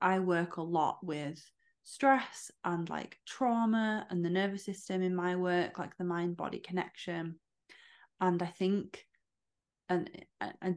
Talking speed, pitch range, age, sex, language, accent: 145 wpm, 165-185 Hz, 20-39, female, English, British